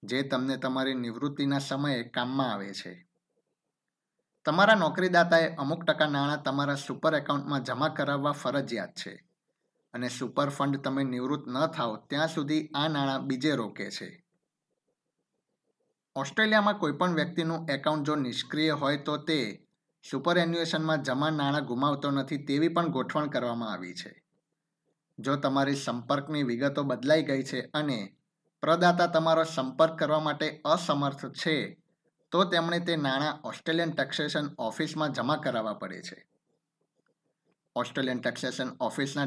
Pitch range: 135-160 Hz